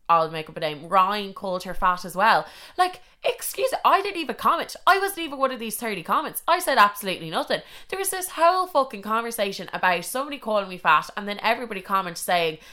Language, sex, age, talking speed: English, female, 20-39, 215 wpm